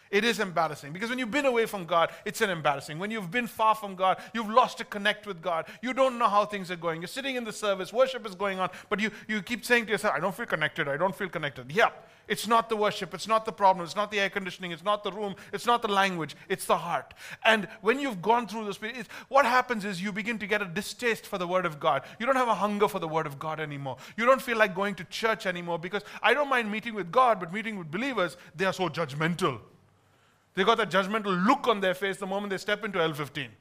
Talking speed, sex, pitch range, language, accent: 270 wpm, male, 185-230 Hz, English, Indian